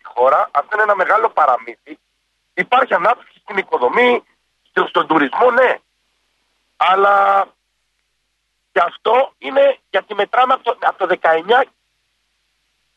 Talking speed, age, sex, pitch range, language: 110 wpm, 50-69, male, 200-270 Hz, Greek